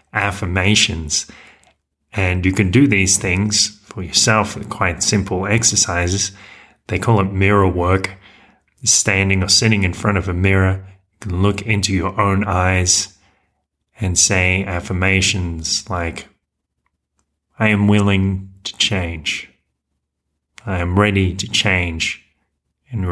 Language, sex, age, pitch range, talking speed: English, male, 30-49, 90-105 Hz, 120 wpm